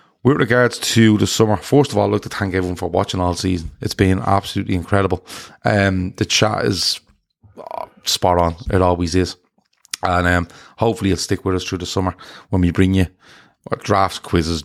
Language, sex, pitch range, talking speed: English, male, 90-105 Hz, 195 wpm